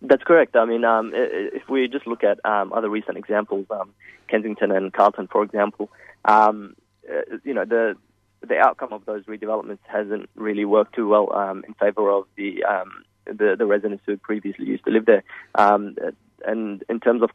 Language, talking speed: English, 190 wpm